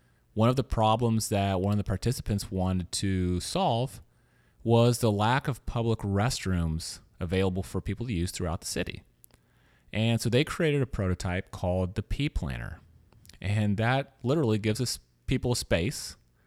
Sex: male